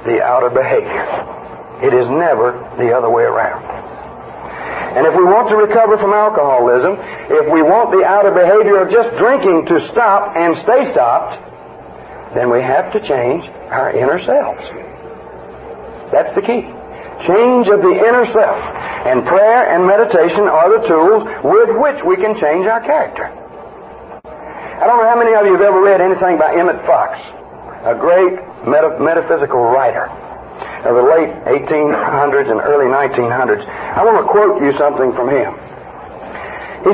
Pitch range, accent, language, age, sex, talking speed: 170-235 Hz, American, English, 60-79, male, 155 wpm